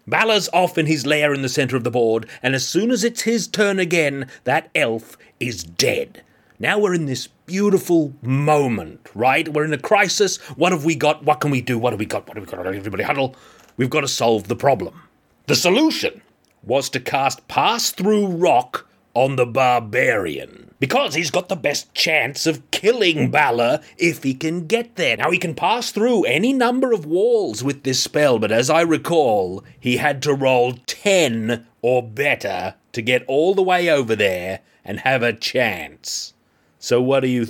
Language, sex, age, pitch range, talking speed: English, male, 30-49, 125-170 Hz, 190 wpm